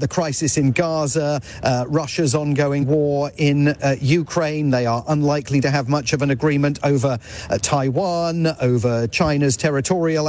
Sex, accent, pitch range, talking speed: male, British, 135-170 Hz, 150 wpm